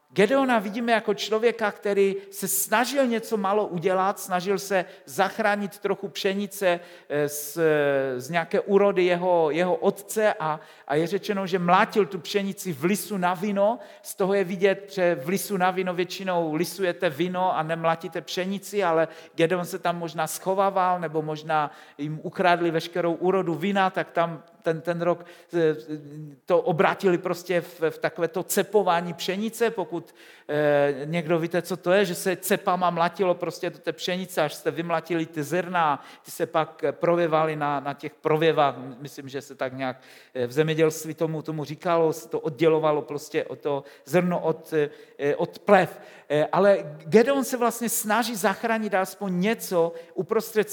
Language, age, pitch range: Czech, 50-69, 160-200 Hz